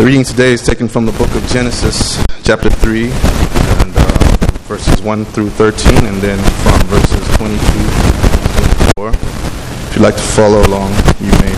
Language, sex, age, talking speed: English, male, 20-39, 170 wpm